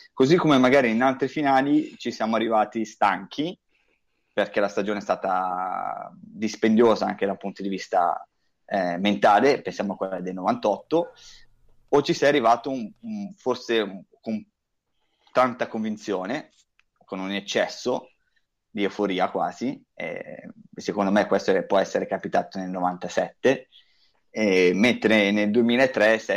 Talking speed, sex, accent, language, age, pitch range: 135 wpm, male, native, Italian, 20-39, 100-145 Hz